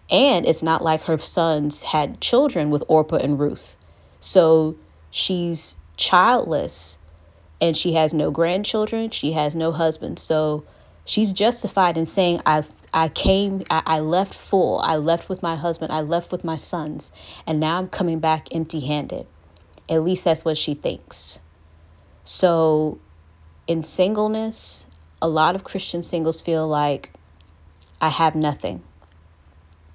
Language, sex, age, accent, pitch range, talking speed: English, female, 30-49, American, 145-170 Hz, 145 wpm